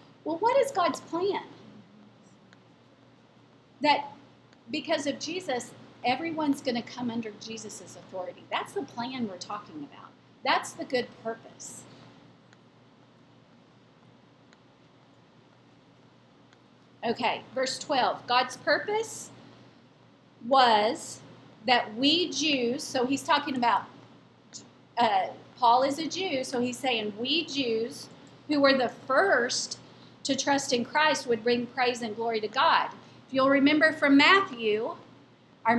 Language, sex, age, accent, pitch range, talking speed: English, female, 40-59, American, 240-310 Hz, 115 wpm